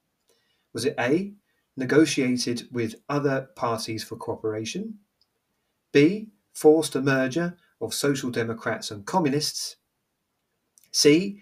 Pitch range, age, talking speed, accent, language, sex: 115-165 Hz, 40-59, 100 wpm, British, English, male